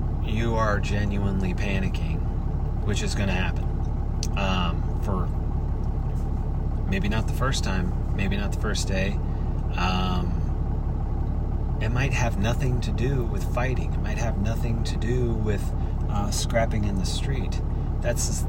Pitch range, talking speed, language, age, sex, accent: 75-105 Hz, 140 wpm, English, 30-49, male, American